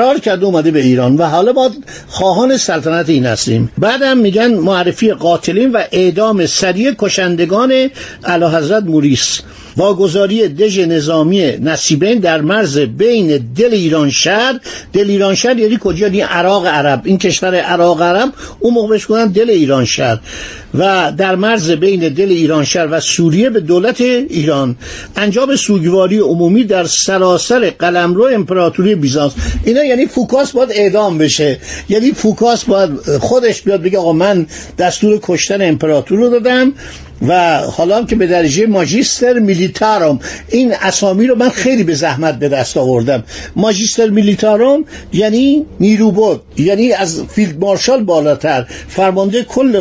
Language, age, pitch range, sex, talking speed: Persian, 60-79, 170-220 Hz, male, 140 wpm